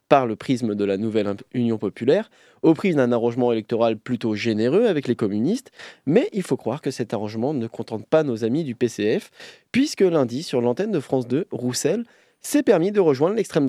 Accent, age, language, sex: French, 20-39, French, male